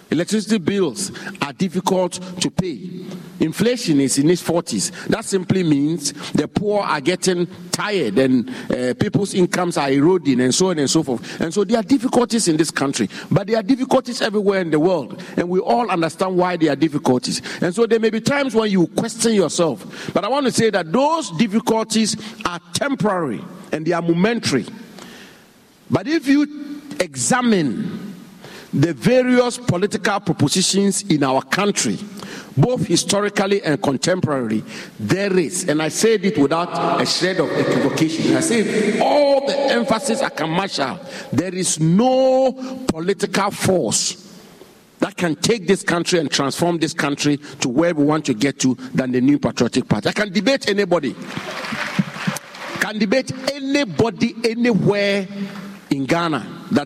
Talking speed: 160 wpm